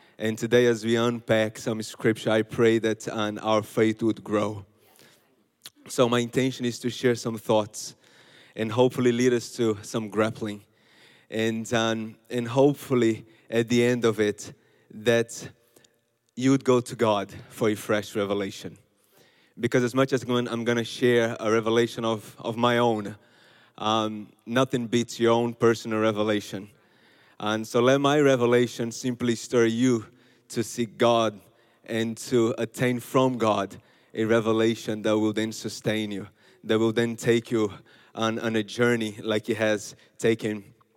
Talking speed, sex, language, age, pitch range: 155 wpm, male, English, 20-39, 110-125 Hz